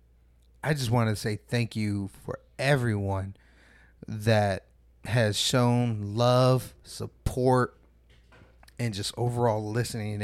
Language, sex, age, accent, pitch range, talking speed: English, male, 30-49, American, 100-125 Hz, 105 wpm